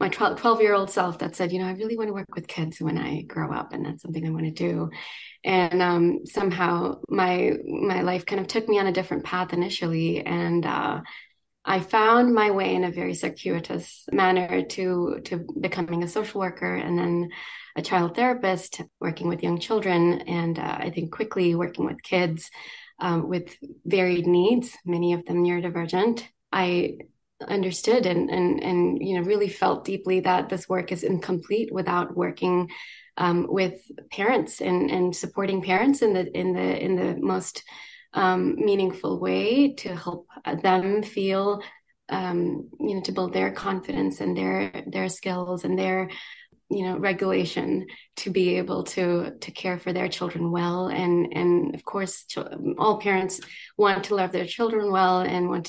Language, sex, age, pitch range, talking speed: English, female, 20-39, 170-195 Hz, 170 wpm